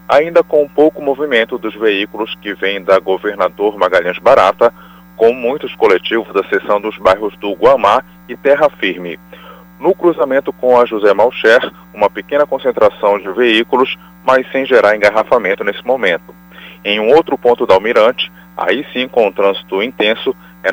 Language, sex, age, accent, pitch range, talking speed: Portuguese, male, 30-49, Brazilian, 105-155 Hz, 155 wpm